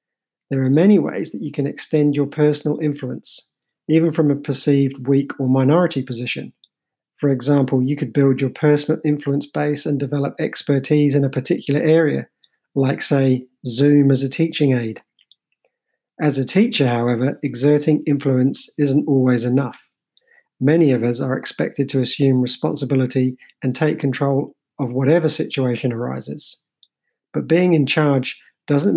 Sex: male